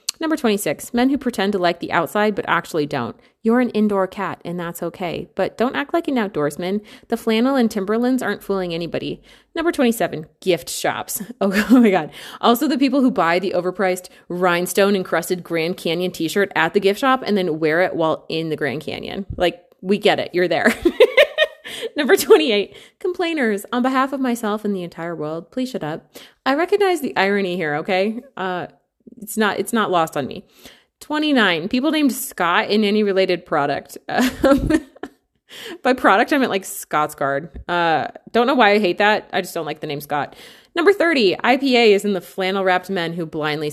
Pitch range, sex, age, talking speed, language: 175-245 Hz, female, 30-49, 190 wpm, English